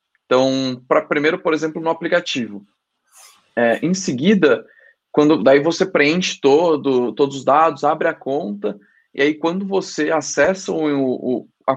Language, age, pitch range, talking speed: Portuguese, 20-39, 145-190 Hz, 115 wpm